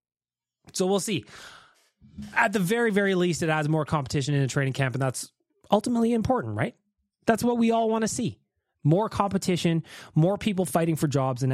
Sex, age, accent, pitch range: male, 20-39, American, 125-195 Hz